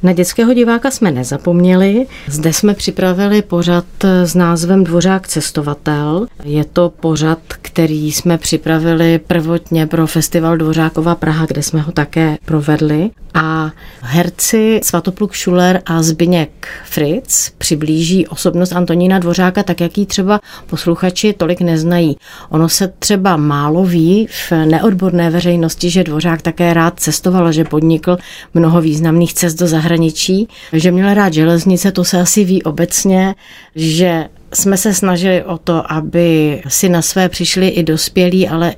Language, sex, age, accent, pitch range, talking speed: Czech, female, 40-59, native, 160-185 Hz, 140 wpm